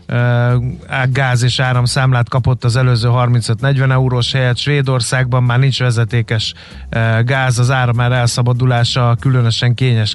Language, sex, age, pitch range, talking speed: Hungarian, male, 30-49, 115-130 Hz, 120 wpm